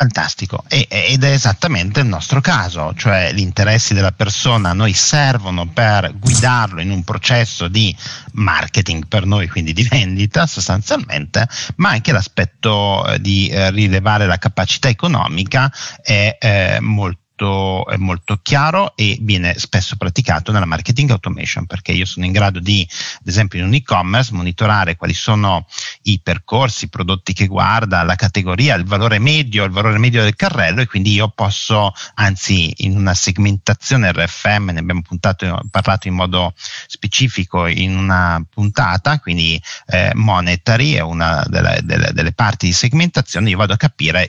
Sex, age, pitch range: male, 50-69, 95-125 Hz